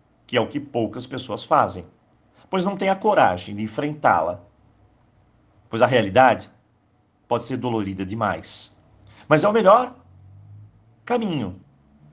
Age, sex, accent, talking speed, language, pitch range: 50-69, male, Brazilian, 130 wpm, Portuguese, 110-170 Hz